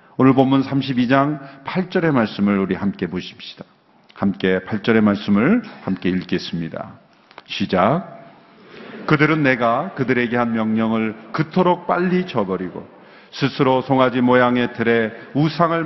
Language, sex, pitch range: Korean, male, 115-165 Hz